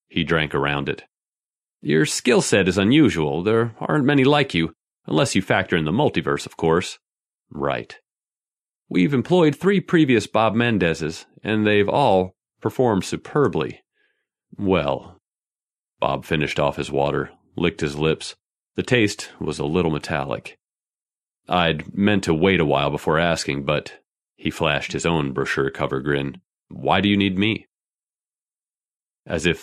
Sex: male